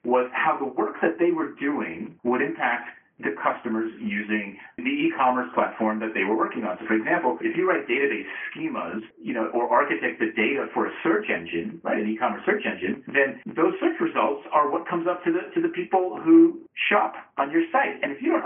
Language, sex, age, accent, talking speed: English, male, 40-59, American, 215 wpm